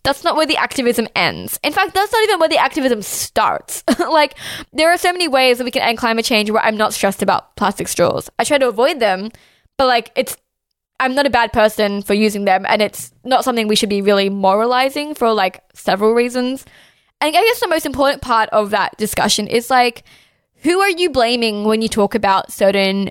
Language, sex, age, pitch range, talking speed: English, female, 10-29, 210-265 Hz, 220 wpm